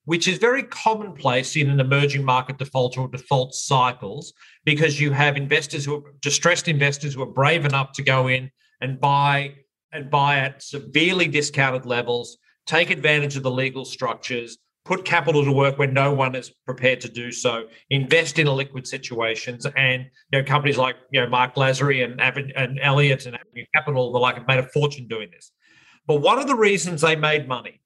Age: 40-59